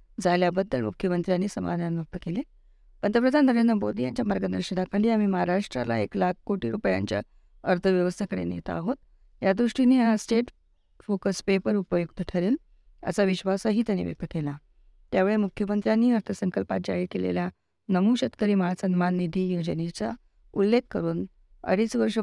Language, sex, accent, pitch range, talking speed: Marathi, female, native, 170-215 Hz, 125 wpm